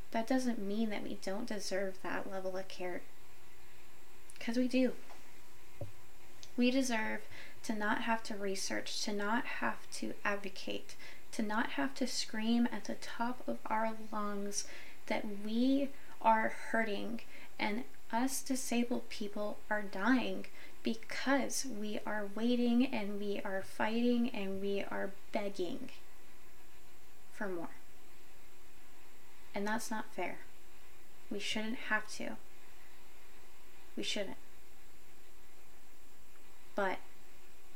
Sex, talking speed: female, 115 wpm